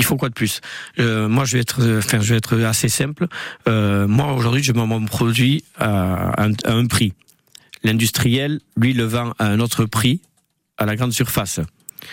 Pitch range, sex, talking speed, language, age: 110-130 Hz, male, 205 wpm, French, 50-69